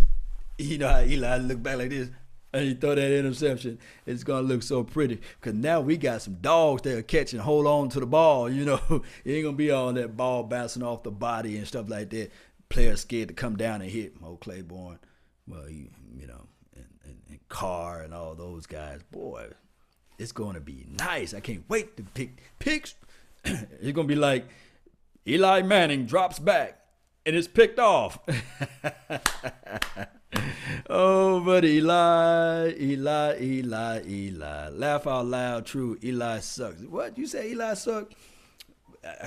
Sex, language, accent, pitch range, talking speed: male, English, American, 90-150 Hz, 175 wpm